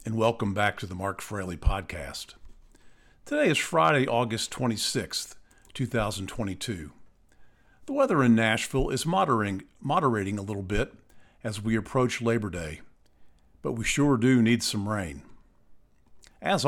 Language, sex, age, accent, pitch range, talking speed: English, male, 50-69, American, 100-120 Hz, 135 wpm